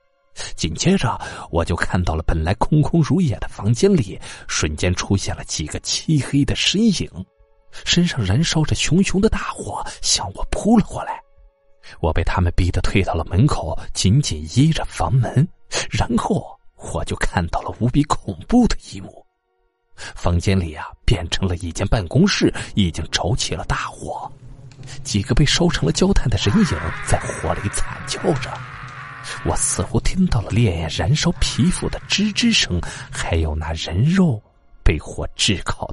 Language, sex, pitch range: Chinese, male, 90-150 Hz